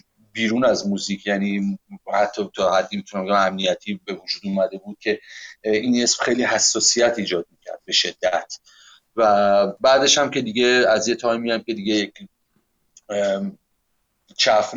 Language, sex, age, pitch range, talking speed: Persian, male, 30-49, 105-125 Hz, 140 wpm